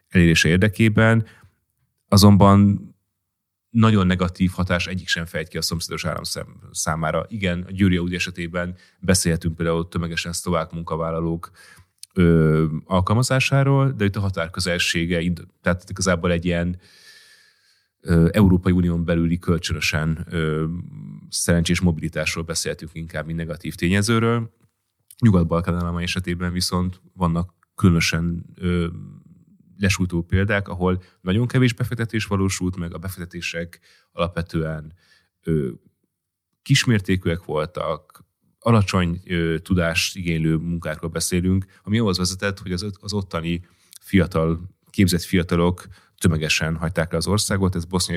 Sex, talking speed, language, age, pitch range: male, 105 wpm, Hungarian, 30-49, 85-95 Hz